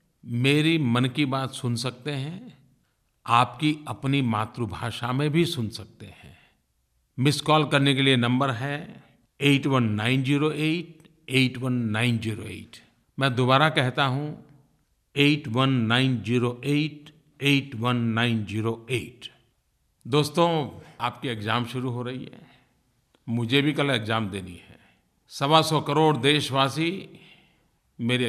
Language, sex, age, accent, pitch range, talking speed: Hindi, male, 50-69, native, 115-150 Hz, 135 wpm